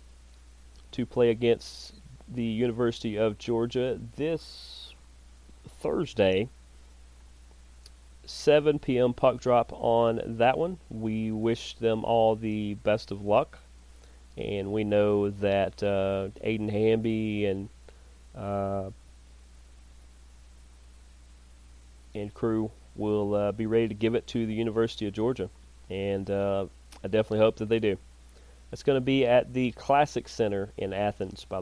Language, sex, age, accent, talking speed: English, male, 30-49, American, 125 wpm